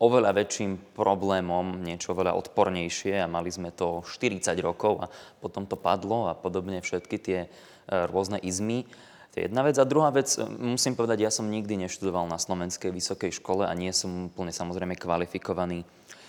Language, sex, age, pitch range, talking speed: Slovak, male, 20-39, 90-110 Hz, 165 wpm